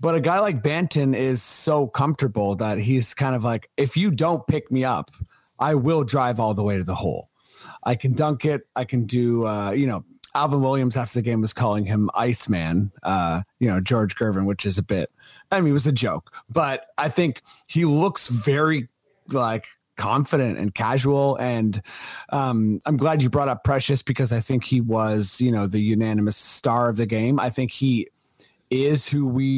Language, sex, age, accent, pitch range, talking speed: English, male, 30-49, American, 110-140 Hz, 200 wpm